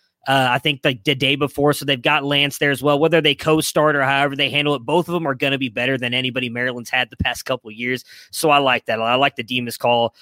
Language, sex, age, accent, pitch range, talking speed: English, male, 20-39, American, 130-155 Hz, 290 wpm